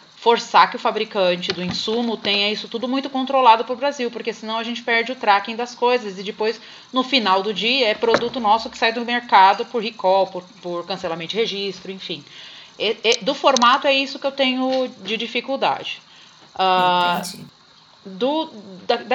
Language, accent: Portuguese, Brazilian